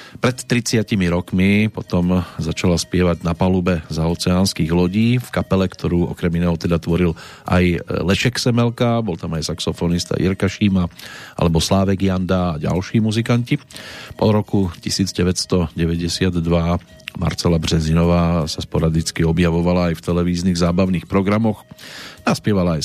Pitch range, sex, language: 85-100 Hz, male, Slovak